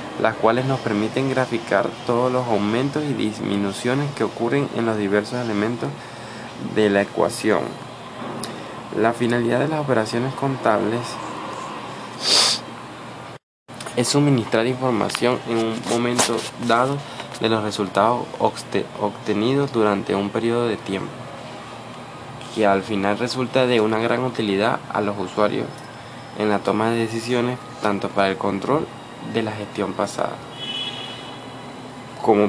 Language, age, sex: Spanish, 20-39, male